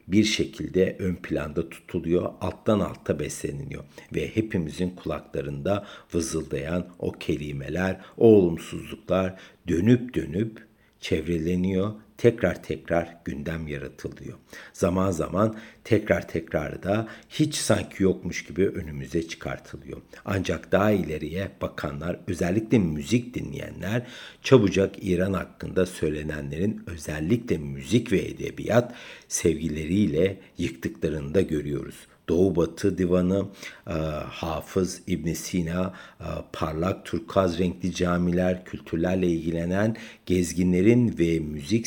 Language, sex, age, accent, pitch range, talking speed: Turkish, male, 60-79, native, 80-100 Hz, 95 wpm